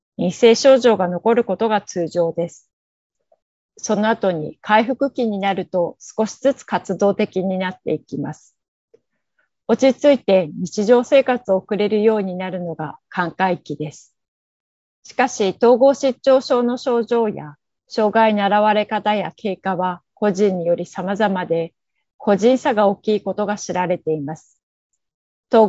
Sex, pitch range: female, 185-230 Hz